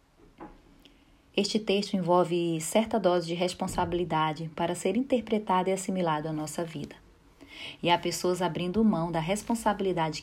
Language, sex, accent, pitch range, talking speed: Portuguese, female, Brazilian, 160-205 Hz, 130 wpm